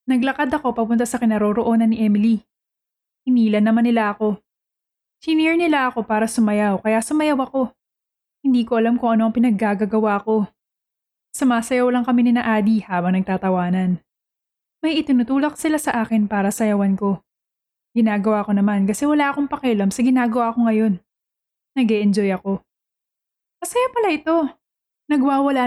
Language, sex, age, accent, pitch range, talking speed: Filipino, female, 20-39, native, 215-270 Hz, 145 wpm